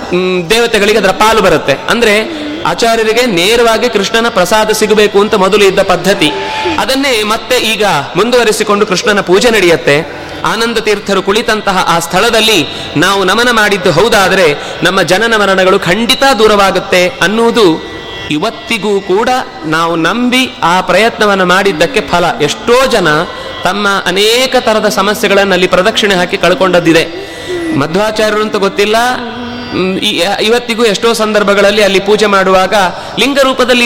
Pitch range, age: 195-235 Hz, 30-49